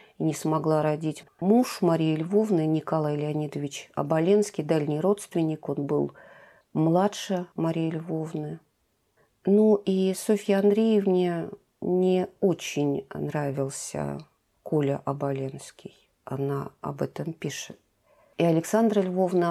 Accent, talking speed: native, 100 wpm